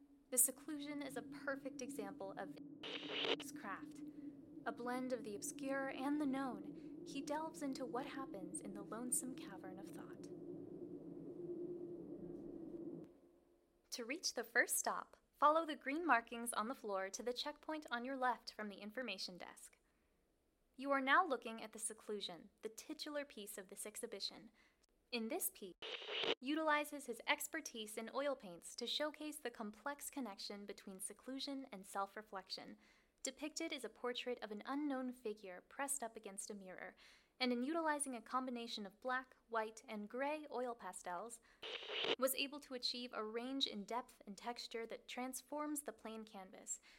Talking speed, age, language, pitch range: 155 wpm, 10-29, English, 225-295 Hz